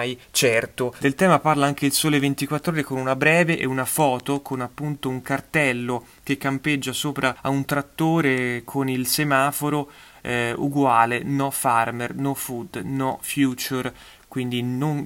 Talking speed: 150 wpm